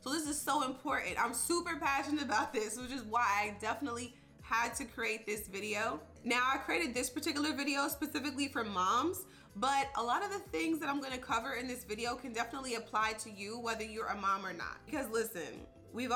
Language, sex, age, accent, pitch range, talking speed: English, female, 20-39, American, 210-265 Hz, 210 wpm